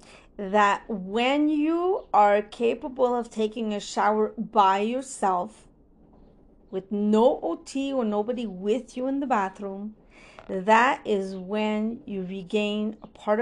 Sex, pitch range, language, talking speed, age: female, 210-300 Hz, English, 125 wpm, 40-59